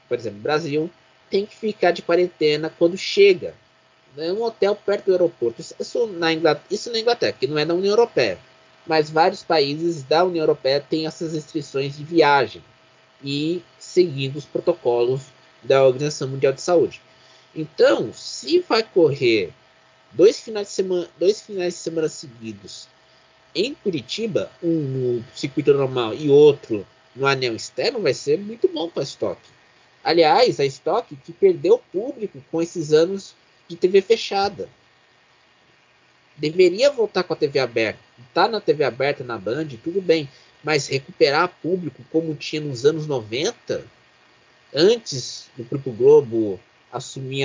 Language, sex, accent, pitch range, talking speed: Portuguese, male, Brazilian, 140-205 Hz, 140 wpm